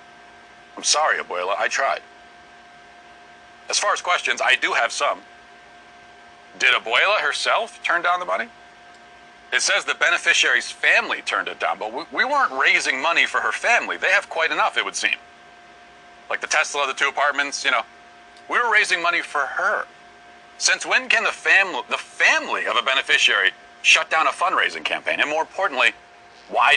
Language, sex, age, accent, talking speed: English, male, 40-59, American, 170 wpm